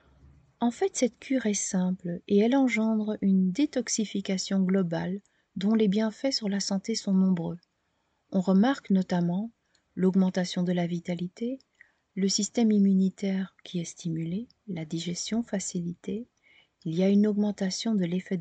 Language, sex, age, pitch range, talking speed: French, female, 40-59, 170-200 Hz, 140 wpm